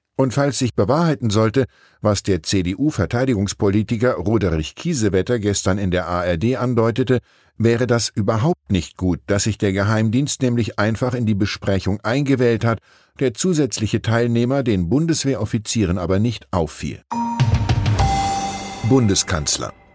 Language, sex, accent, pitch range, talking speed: German, male, German, 95-125 Hz, 120 wpm